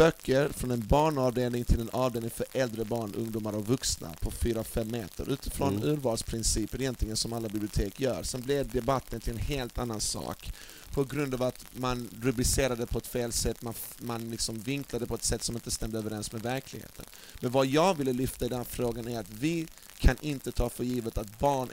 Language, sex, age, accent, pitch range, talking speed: English, male, 30-49, Swedish, 115-140 Hz, 200 wpm